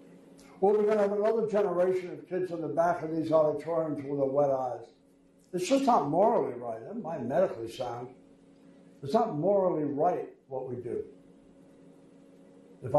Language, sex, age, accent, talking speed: English, male, 60-79, American, 165 wpm